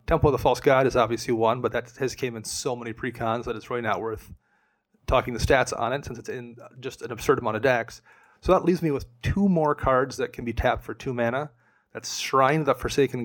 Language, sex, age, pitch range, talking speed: English, male, 30-49, 120-145 Hz, 250 wpm